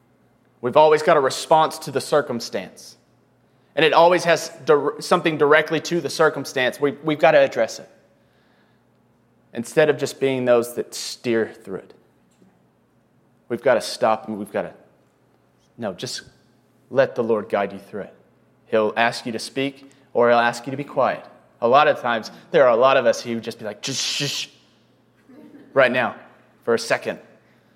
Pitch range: 125-185 Hz